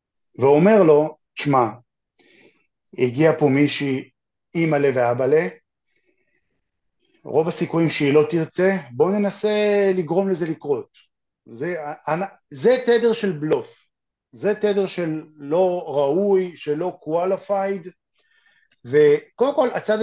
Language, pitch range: Hebrew, 145-200 Hz